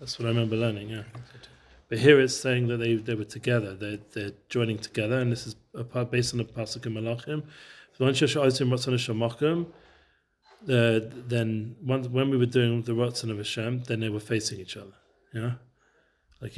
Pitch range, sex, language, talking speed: 110-125 Hz, male, English, 180 wpm